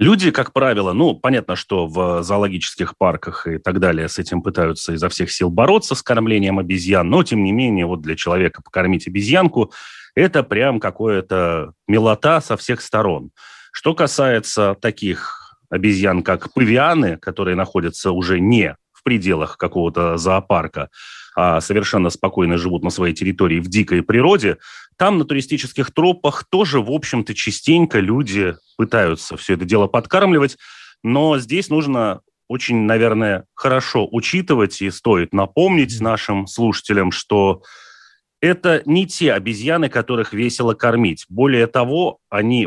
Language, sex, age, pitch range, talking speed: Russian, male, 30-49, 95-130 Hz, 140 wpm